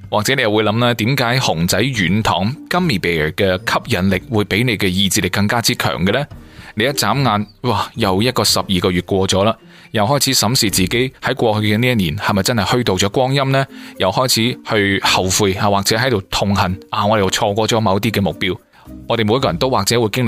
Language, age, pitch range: Chinese, 20-39, 100-135 Hz